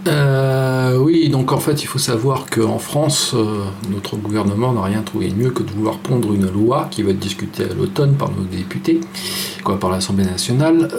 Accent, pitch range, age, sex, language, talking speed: French, 100-135 Hz, 40-59, male, French, 195 wpm